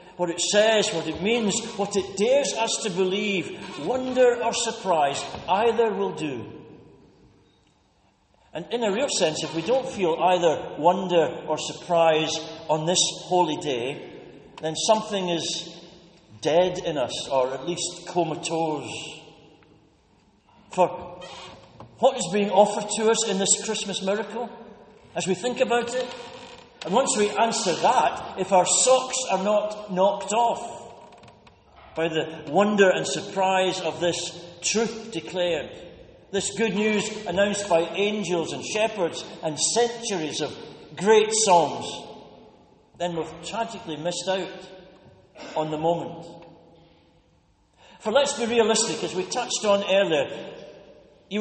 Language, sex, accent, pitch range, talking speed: English, male, British, 170-220 Hz, 130 wpm